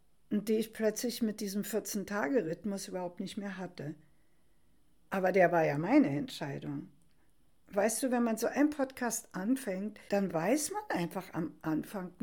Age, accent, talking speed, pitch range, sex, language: 60-79, German, 145 wpm, 185-230 Hz, female, German